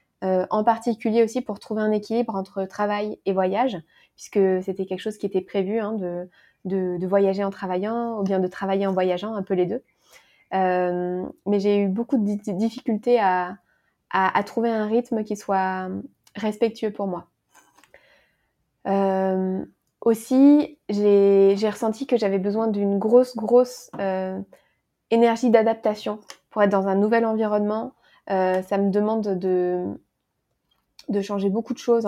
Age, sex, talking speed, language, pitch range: 20-39, female, 155 wpm, French, 195-225 Hz